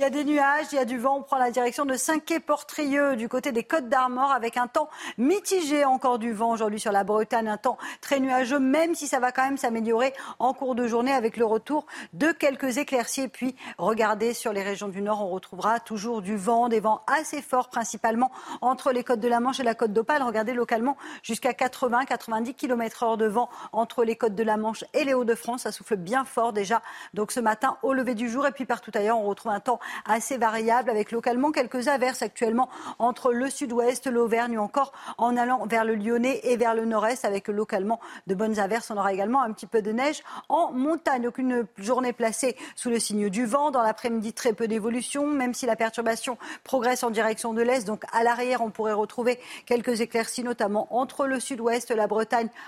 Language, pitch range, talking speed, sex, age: French, 220-260 Hz, 220 wpm, female, 40-59